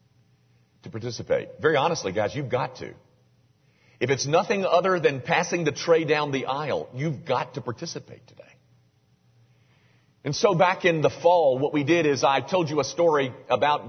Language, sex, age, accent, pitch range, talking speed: English, male, 50-69, American, 130-175 Hz, 175 wpm